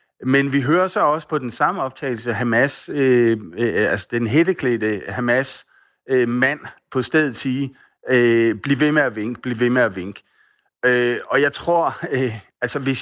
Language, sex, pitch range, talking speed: Danish, male, 120-145 Hz, 175 wpm